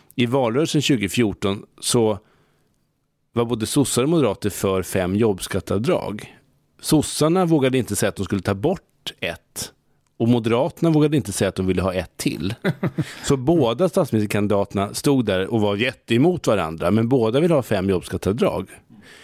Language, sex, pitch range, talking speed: English, male, 95-130 Hz, 145 wpm